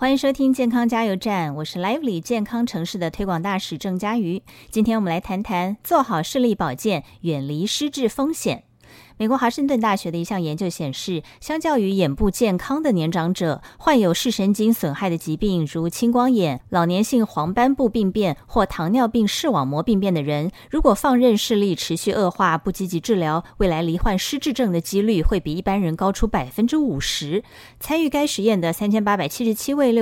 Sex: female